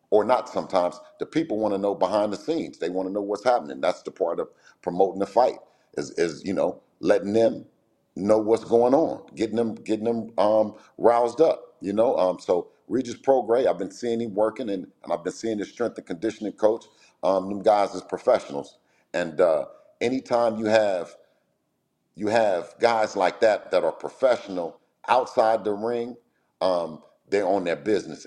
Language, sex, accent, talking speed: English, male, American, 185 wpm